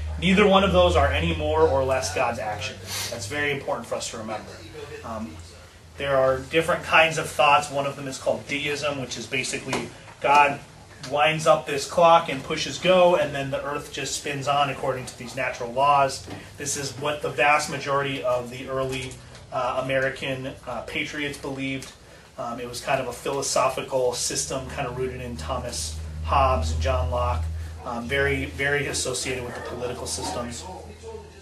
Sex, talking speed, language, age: male, 180 wpm, English, 30-49